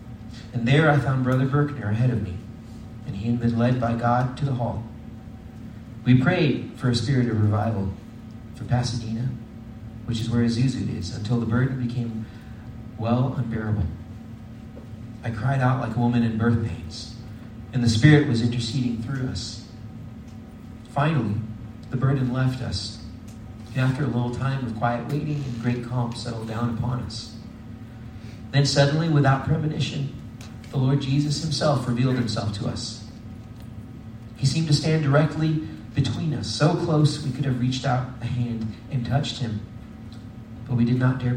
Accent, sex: American, male